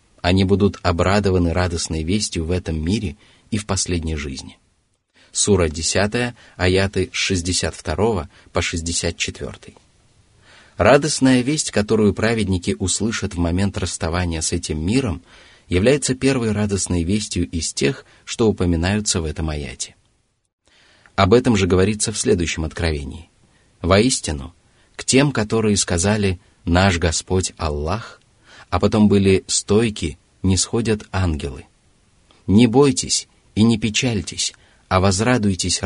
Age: 30-49